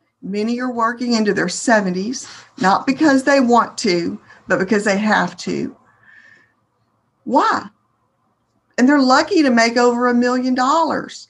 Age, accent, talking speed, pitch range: 50-69, American, 140 wpm, 195-245 Hz